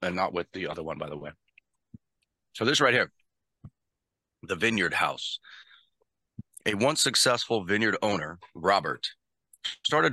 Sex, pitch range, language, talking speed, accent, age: male, 85-110 Hz, English, 135 wpm, American, 40-59